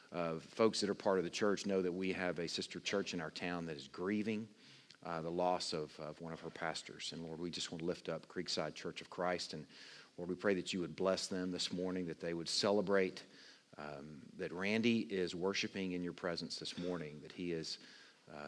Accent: American